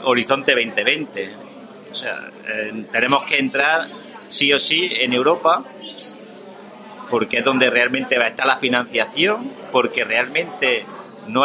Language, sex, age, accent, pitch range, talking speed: Spanish, male, 40-59, Spanish, 120-155 Hz, 120 wpm